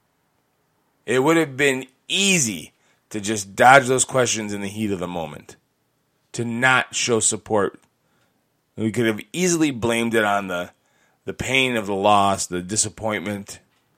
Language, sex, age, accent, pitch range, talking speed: English, male, 30-49, American, 100-130 Hz, 150 wpm